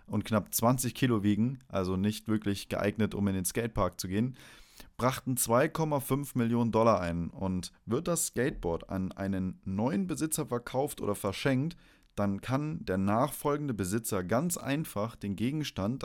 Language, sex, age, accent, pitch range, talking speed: German, male, 30-49, German, 100-135 Hz, 150 wpm